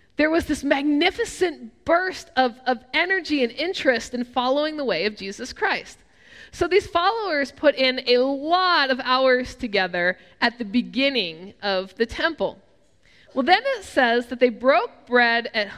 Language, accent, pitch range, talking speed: English, American, 240-330 Hz, 160 wpm